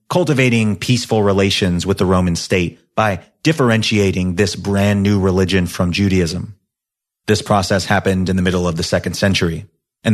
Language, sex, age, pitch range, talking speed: English, male, 30-49, 95-110 Hz, 155 wpm